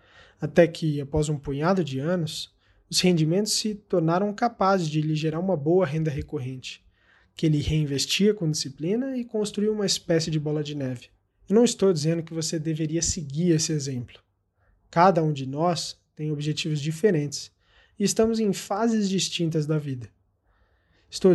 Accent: Brazilian